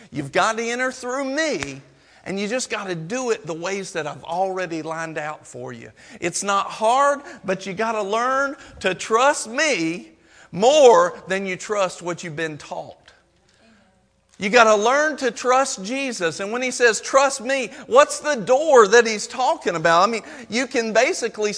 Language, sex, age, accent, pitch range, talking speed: English, male, 50-69, American, 200-280 Hz, 185 wpm